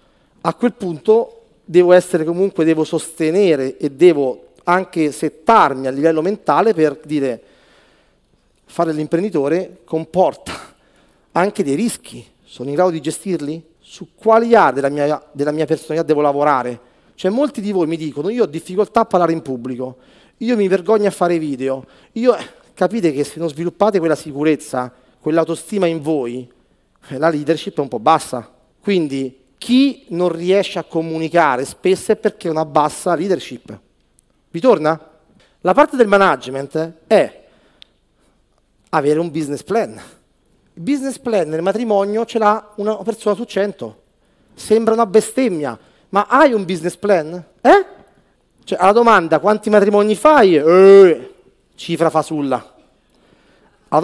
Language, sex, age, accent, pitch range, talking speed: Italian, male, 40-59, native, 155-205 Hz, 140 wpm